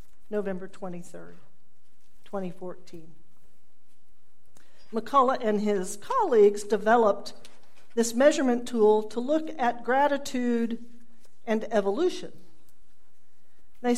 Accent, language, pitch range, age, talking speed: American, English, 200-275 Hz, 50-69, 75 wpm